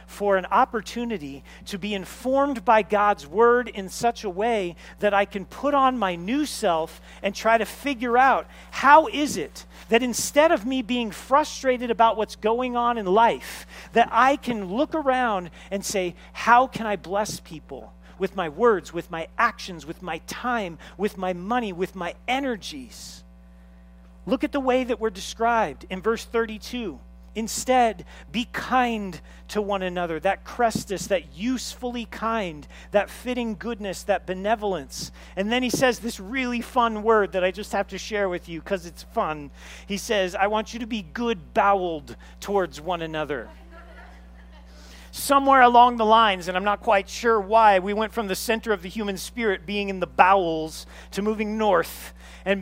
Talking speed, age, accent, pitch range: 175 wpm, 40-59, American, 175-235 Hz